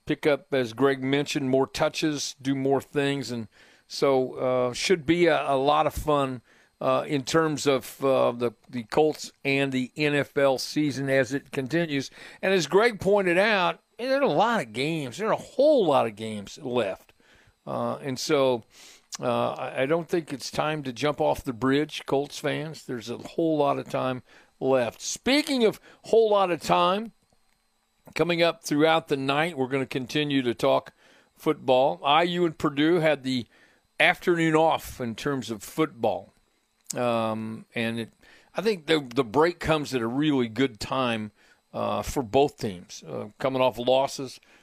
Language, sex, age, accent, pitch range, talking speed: English, male, 50-69, American, 130-155 Hz, 170 wpm